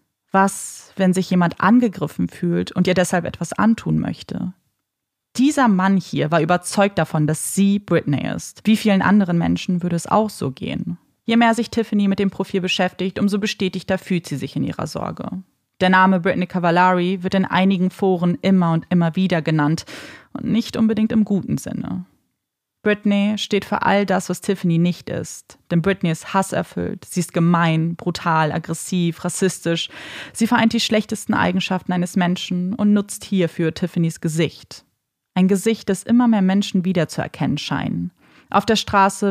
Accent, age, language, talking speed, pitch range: German, 30-49, German, 165 wpm, 170-200 Hz